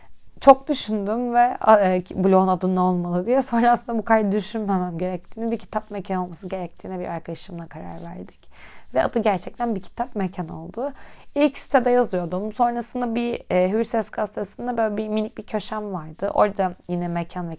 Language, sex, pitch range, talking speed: Turkish, female, 185-235 Hz, 165 wpm